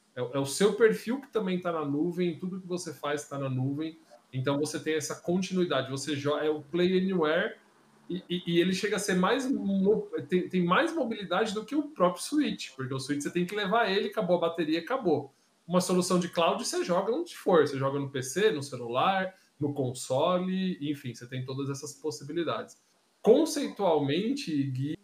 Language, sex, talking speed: Portuguese, male, 190 wpm